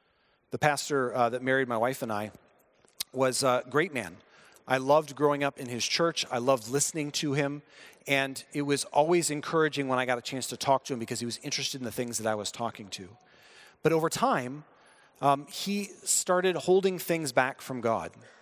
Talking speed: 200 wpm